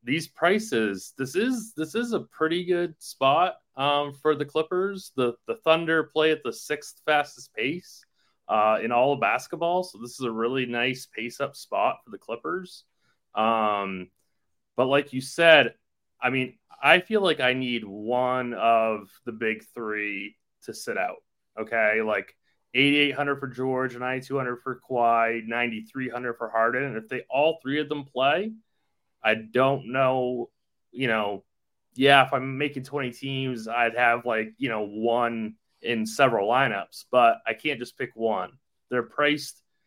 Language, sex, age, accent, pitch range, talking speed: English, male, 30-49, American, 115-145 Hz, 170 wpm